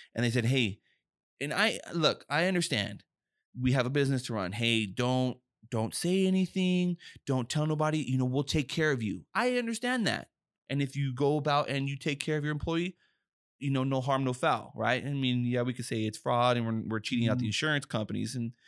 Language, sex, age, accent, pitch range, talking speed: English, male, 20-39, American, 110-135 Hz, 220 wpm